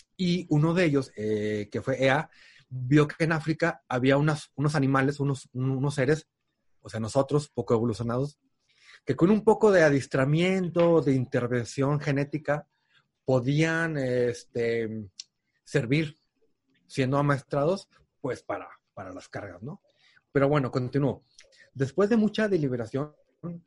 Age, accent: 30-49, Mexican